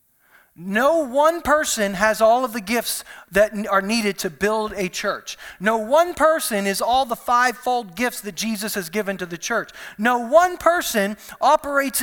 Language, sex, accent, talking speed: English, male, American, 170 wpm